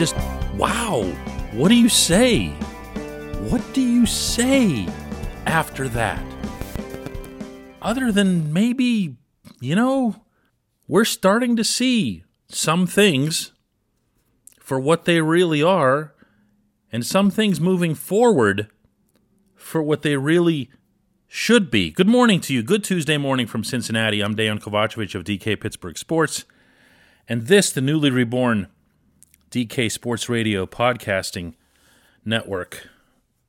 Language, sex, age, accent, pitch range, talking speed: English, male, 40-59, American, 110-175 Hz, 115 wpm